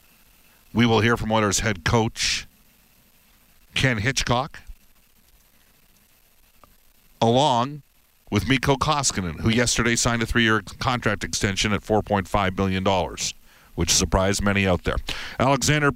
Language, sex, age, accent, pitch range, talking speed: English, male, 50-69, American, 95-130 Hz, 110 wpm